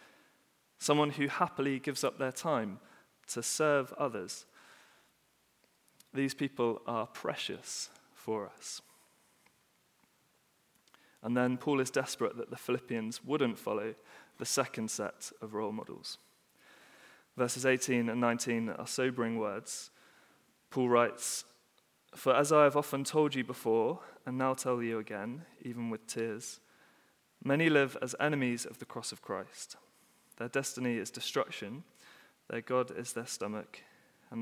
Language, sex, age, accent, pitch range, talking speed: English, male, 30-49, British, 120-140 Hz, 135 wpm